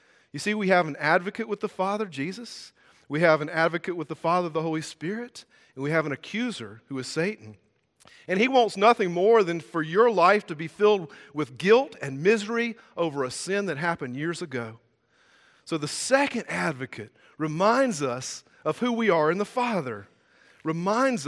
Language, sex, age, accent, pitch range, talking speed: English, male, 40-59, American, 160-230 Hz, 185 wpm